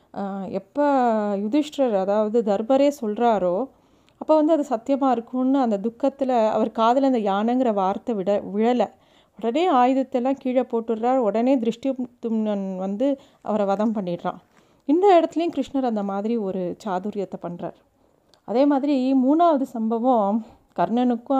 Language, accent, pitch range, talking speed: Tamil, native, 210-265 Hz, 120 wpm